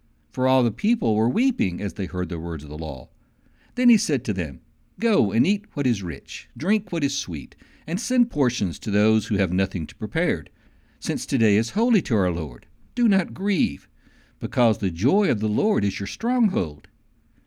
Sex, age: male, 60-79